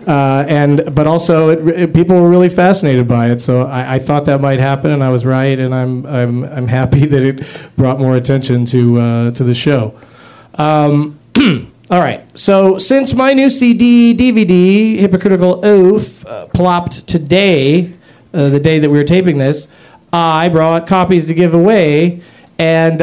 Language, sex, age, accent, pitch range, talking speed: English, male, 40-59, American, 135-195 Hz, 175 wpm